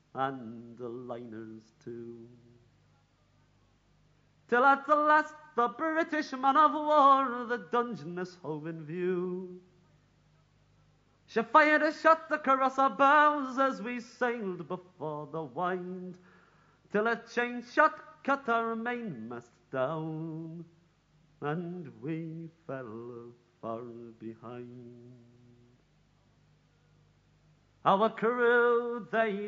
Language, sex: English, male